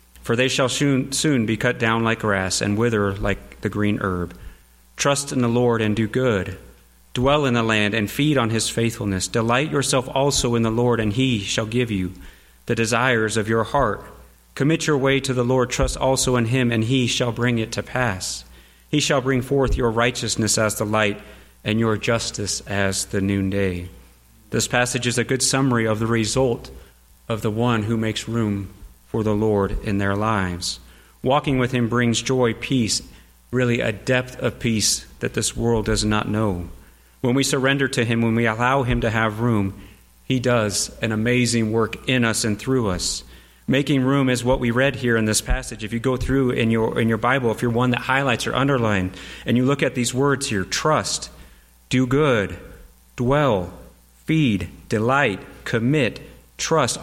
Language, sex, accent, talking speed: English, male, American, 190 wpm